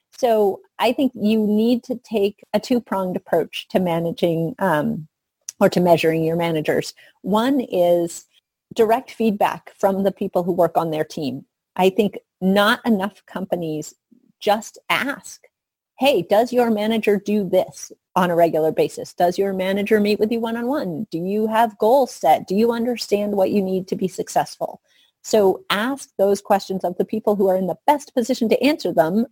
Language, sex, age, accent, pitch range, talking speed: English, female, 30-49, American, 175-225 Hz, 170 wpm